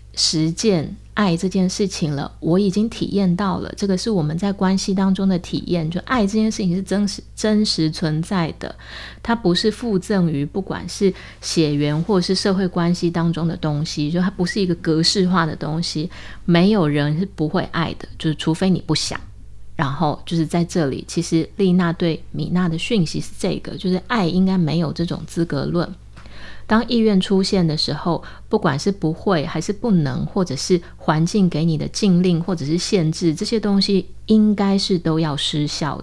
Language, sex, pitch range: Chinese, female, 160-195 Hz